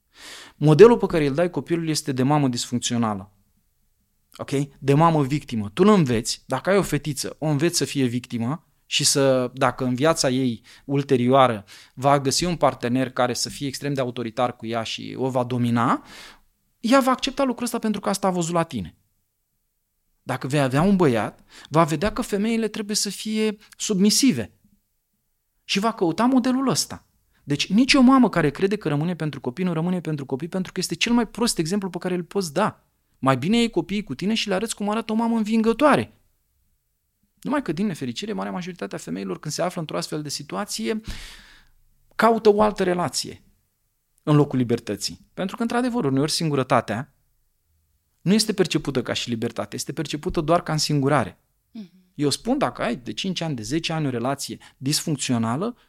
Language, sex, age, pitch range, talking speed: Romanian, male, 30-49, 130-200 Hz, 185 wpm